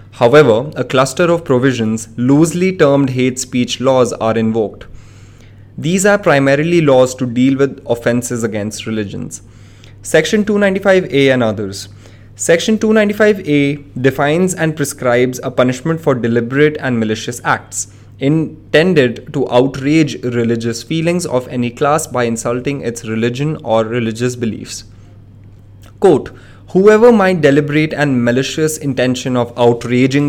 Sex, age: male, 20-39